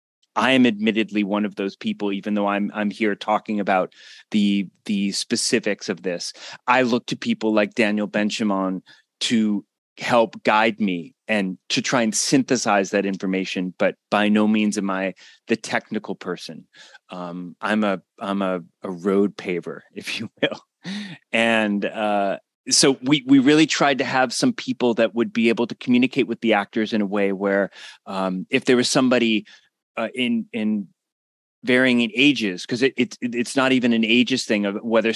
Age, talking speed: 30-49, 175 wpm